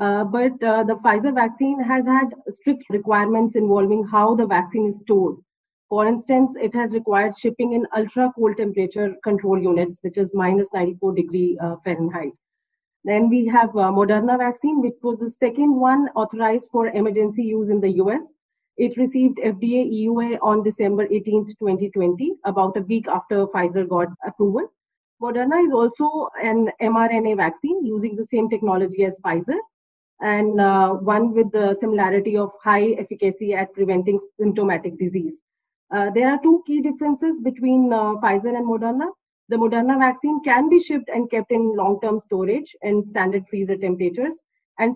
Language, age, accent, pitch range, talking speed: English, 30-49, Indian, 200-250 Hz, 160 wpm